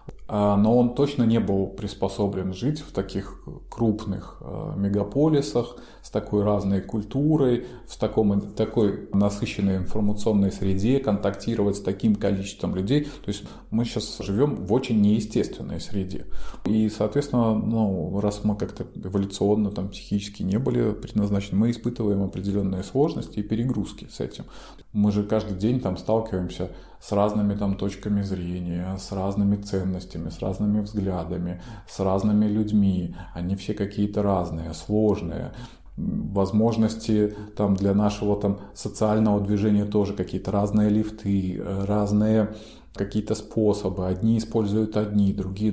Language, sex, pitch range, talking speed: Russian, male, 95-110 Hz, 125 wpm